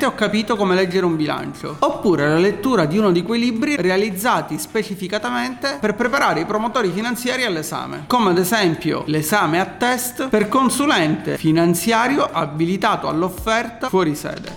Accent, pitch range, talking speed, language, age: native, 170-240 Hz, 145 wpm, Italian, 40-59